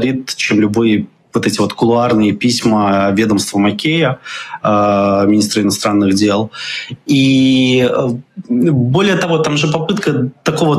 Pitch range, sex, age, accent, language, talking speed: 110-135 Hz, male, 20-39, native, Ukrainian, 110 wpm